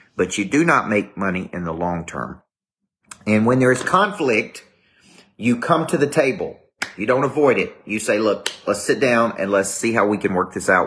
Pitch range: 90-120 Hz